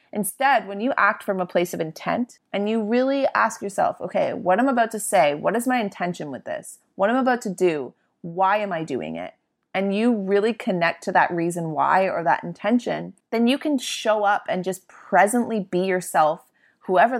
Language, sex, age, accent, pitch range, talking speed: English, female, 30-49, American, 185-245 Hz, 200 wpm